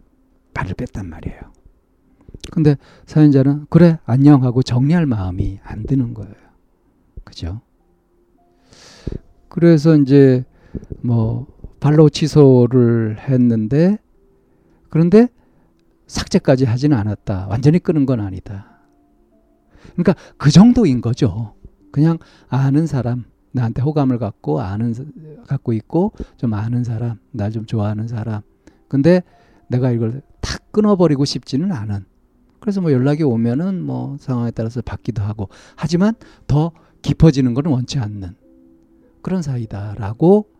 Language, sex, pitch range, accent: Korean, male, 105-145 Hz, native